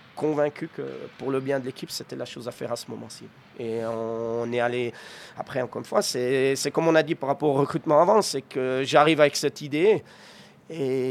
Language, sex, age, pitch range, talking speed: French, male, 30-49, 125-145 Hz, 220 wpm